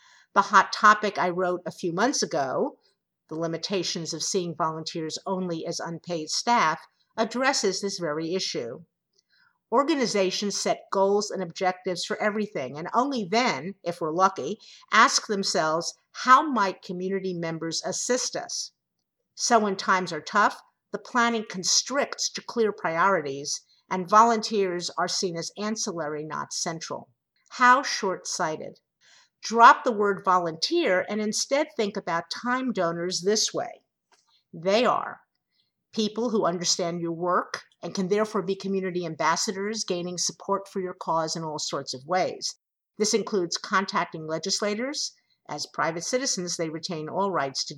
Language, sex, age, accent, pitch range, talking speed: English, female, 50-69, American, 170-215 Hz, 140 wpm